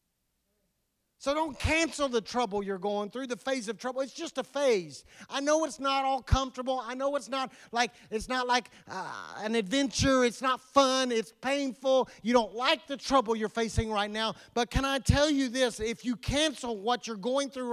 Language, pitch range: English, 200-255 Hz